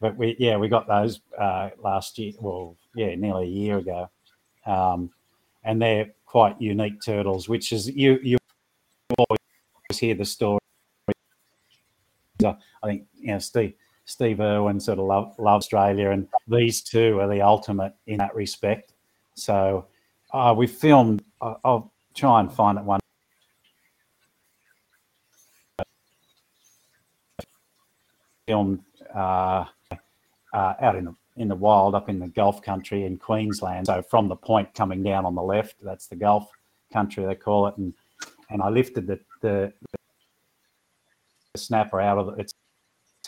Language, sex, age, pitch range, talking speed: English, male, 50-69, 95-110 Hz, 145 wpm